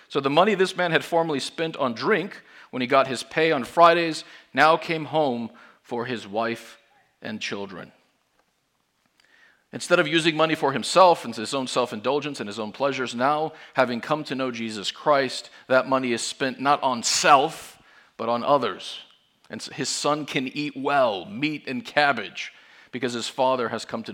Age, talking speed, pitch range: 40-59, 175 wpm, 120-155 Hz